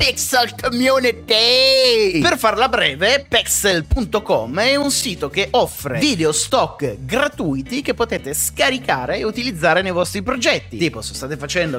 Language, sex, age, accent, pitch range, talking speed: Italian, male, 30-49, native, 165-235 Hz, 130 wpm